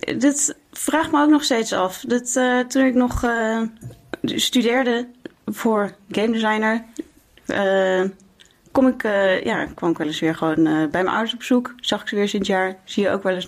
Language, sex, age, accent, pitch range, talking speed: Dutch, female, 20-39, Dutch, 195-235 Hz, 200 wpm